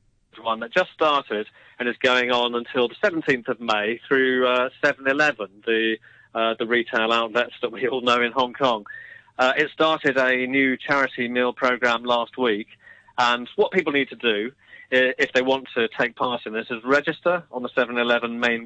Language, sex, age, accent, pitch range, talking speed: English, male, 30-49, British, 115-135 Hz, 185 wpm